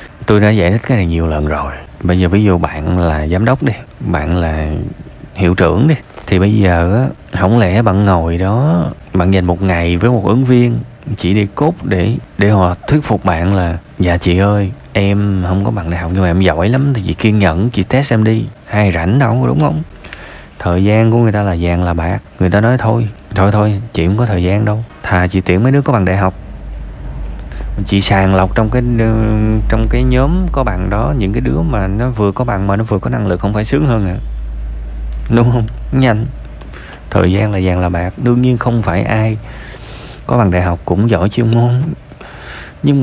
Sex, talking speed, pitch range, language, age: male, 225 wpm, 90-120 Hz, Vietnamese, 20-39